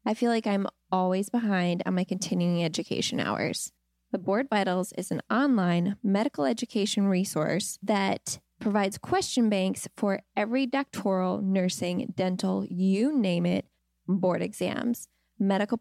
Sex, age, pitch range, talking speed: female, 10-29, 185-235 Hz, 135 wpm